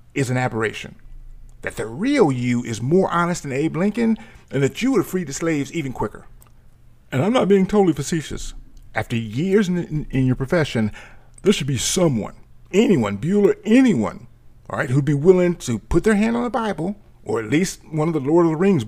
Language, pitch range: English, 115-155 Hz